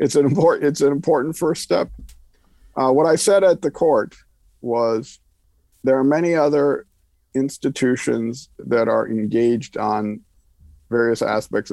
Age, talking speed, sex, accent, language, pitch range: 50-69, 130 wpm, male, American, English, 105-130 Hz